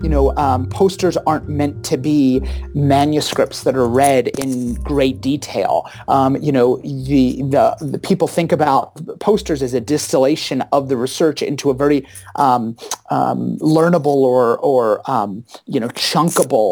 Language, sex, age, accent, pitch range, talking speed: English, male, 30-49, American, 135-160 Hz, 155 wpm